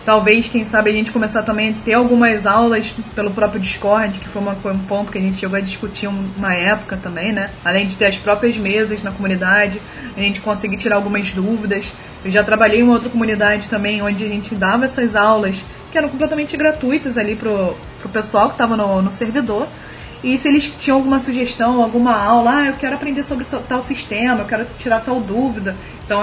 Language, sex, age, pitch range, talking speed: Portuguese, female, 20-39, 210-250 Hz, 205 wpm